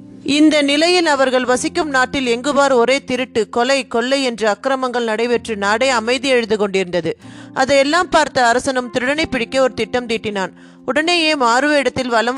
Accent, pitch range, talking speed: native, 225-275 Hz, 140 wpm